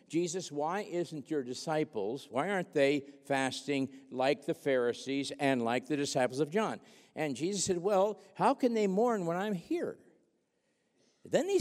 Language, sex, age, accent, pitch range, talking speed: English, male, 50-69, American, 170-260 Hz, 155 wpm